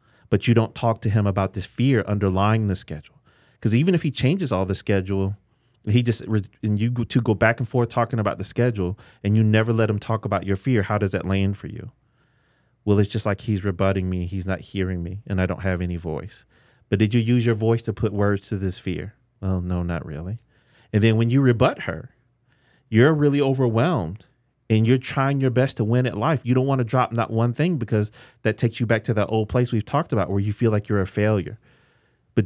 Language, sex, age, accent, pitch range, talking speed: English, male, 30-49, American, 100-120 Hz, 235 wpm